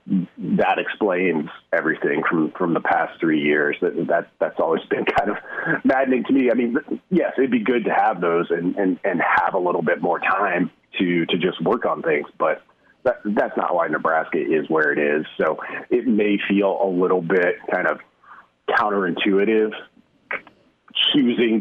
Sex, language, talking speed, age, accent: male, English, 180 wpm, 40-59, American